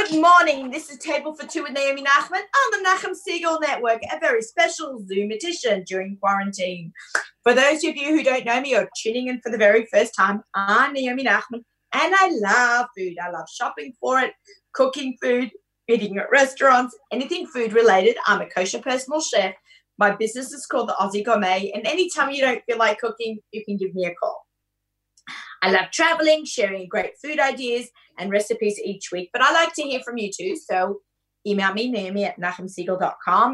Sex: female